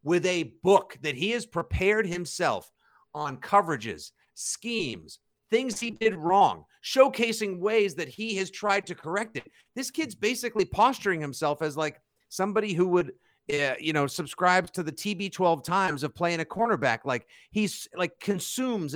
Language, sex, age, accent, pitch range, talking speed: English, male, 50-69, American, 140-185 Hz, 160 wpm